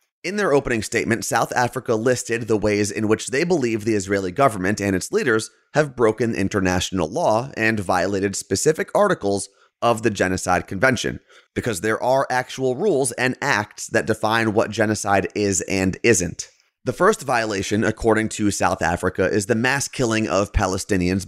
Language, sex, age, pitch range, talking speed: English, male, 30-49, 100-125 Hz, 165 wpm